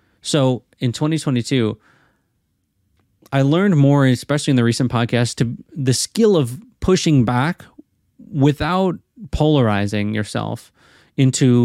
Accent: American